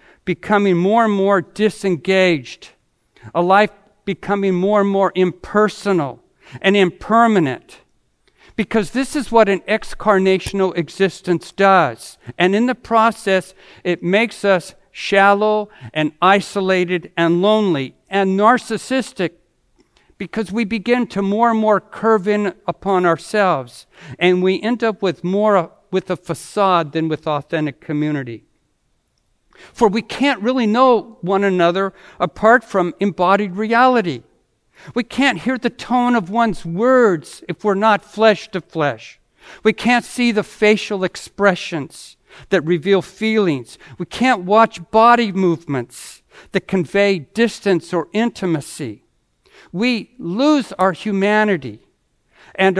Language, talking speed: English, 125 wpm